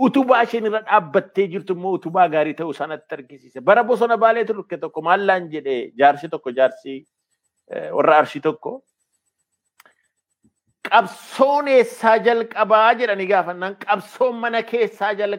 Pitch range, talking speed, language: 190-240 Hz, 130 wpm, Swedish